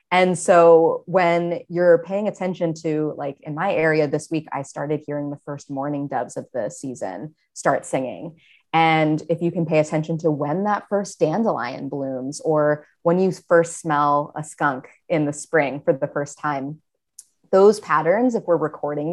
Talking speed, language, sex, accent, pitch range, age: 175 wpm, English, female, American, 150-180 Hz, 20-39